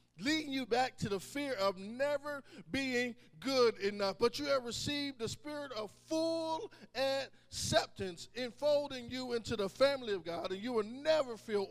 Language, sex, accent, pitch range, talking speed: English, male, American, 195-260 Hz, 165 wpm